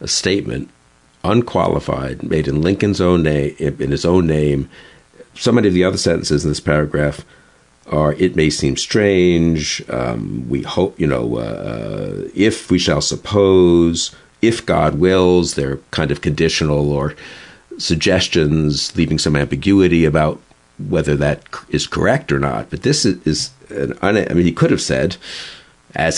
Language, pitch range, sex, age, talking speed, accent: English, 75-90 Hz, male, 50-69, 150 wpm, American